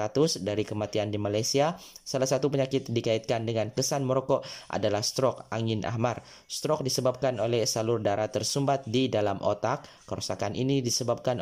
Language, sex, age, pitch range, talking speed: Malay, male, 20-39, 110-135 Hz, 140 wpm